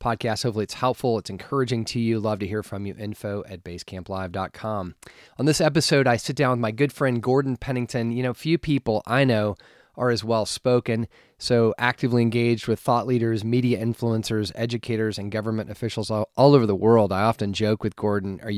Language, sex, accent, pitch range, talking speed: English, male, American, 100-120 Hz, 195 wpm